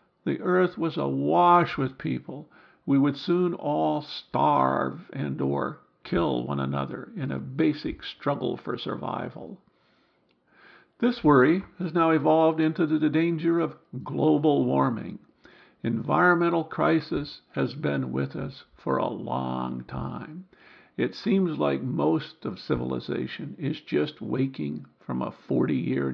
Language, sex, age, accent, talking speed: English, male, 50-69, American, 125 wpm